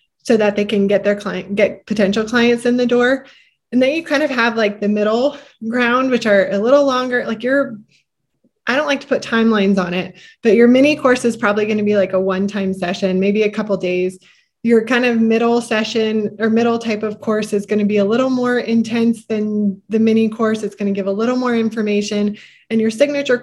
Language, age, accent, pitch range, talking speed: English, 20-39, American, 205-245 Hz, 230 wpm